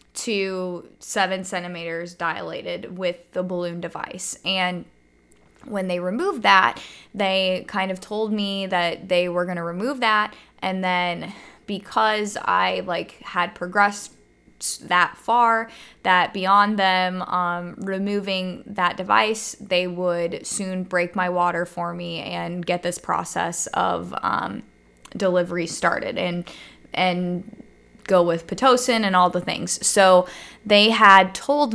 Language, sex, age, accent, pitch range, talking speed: English, female, 20-39, American, 175-200 Hz, 130 wpm